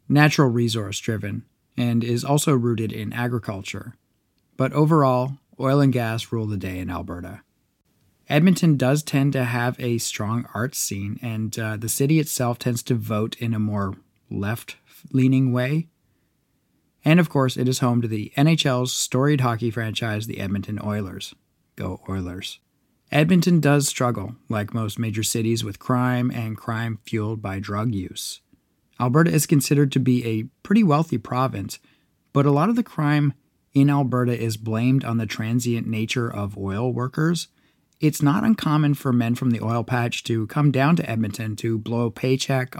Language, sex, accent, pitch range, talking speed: English, male, American, 110-140 Hz, 160 wpm